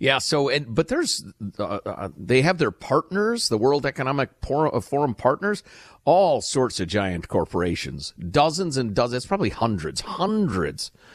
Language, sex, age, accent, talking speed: English, male, 50-69, American, 140 wpm